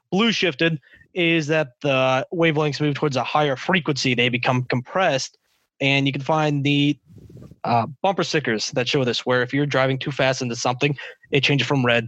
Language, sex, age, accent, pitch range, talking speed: English, male, 20-39, American, 130-160 Hz, 185 wpm